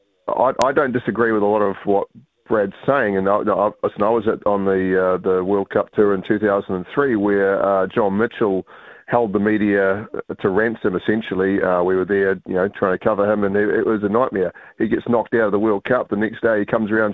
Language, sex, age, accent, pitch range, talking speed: English, male, 30-49, Australian, 100-115 Hz, 230 wpm